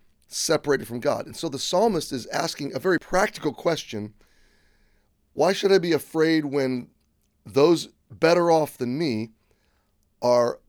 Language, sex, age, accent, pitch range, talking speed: English, male, 30-49, American, 115-150 Hz, 140 wpm